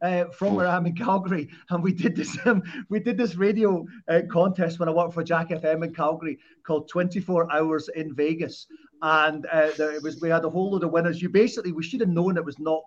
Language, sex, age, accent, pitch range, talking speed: English, male, 30-49, British, 155-190 Hz, 240 wpm